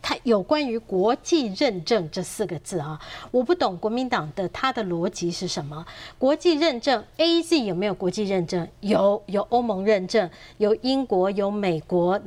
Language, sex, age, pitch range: Chinese, female, 30-49, 200-275 Hz